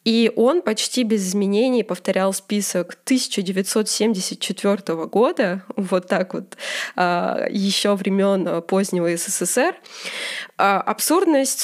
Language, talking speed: Russian, 90 wpm